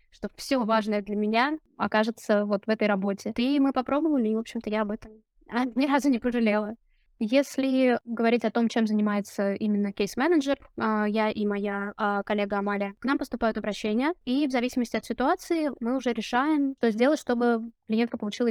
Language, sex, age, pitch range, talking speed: Russian, female, 20-39, 210-250 Hz, 170 wpm